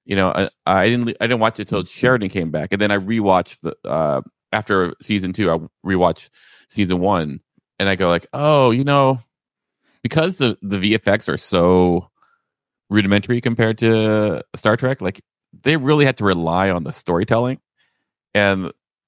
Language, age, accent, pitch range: English, 30-49, American, 90-115 Hz